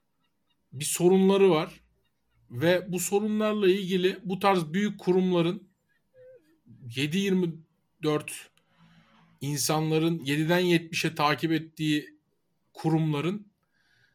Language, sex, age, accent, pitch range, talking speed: Turkish, male, 50-69, native, 160-200 Hz, 75 wpm